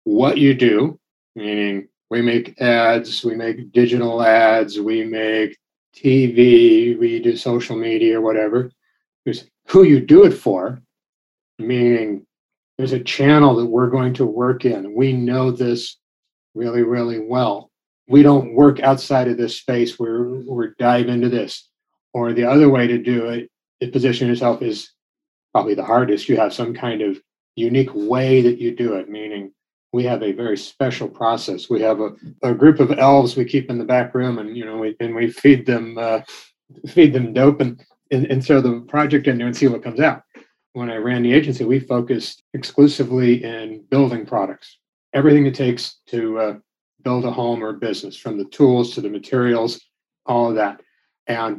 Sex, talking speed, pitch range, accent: male, 180 wpm, 115-135 Hz, American